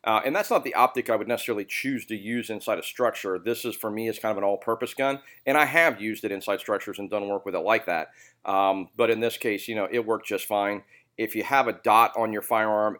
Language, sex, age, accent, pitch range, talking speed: English, male, 40-59, American, 100-120 Hz, 270 wpm